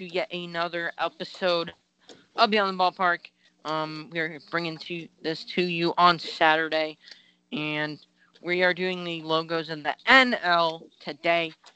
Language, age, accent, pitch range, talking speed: English, 20-39, American, 150-180 Hz, 145 wpm